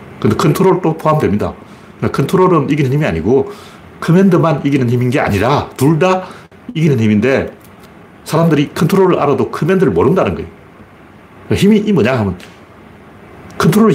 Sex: male